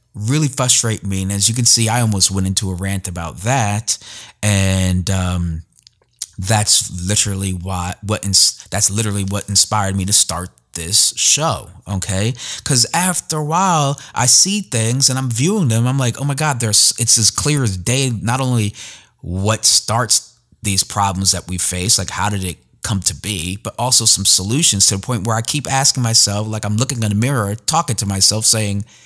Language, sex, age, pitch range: English, male, 30-49, 100-130 Hz